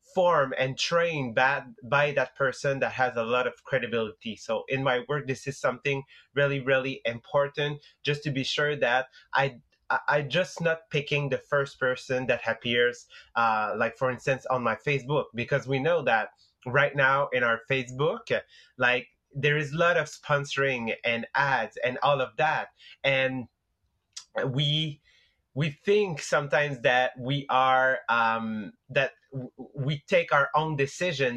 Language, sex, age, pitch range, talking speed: English, male, 30-49, 125-145 Hz, 160 wpm